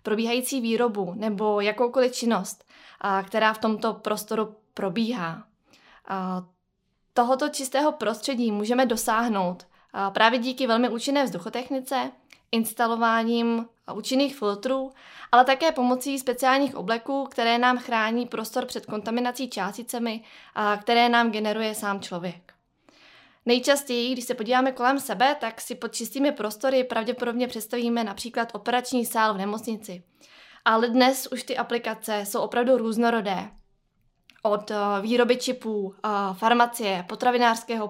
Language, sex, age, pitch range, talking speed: Czech, female, 20-39, 210-250 Hz, 110 wpm